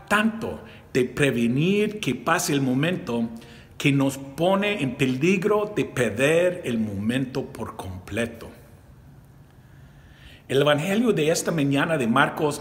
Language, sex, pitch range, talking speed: English, male, 115-165 Hz, 120 wpm